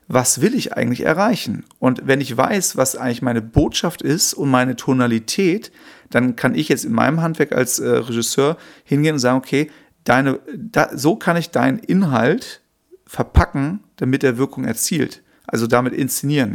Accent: German